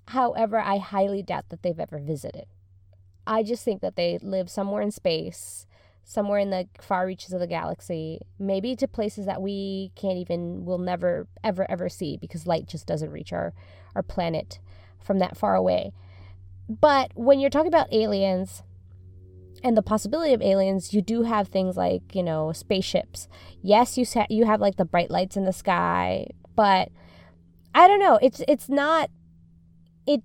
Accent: American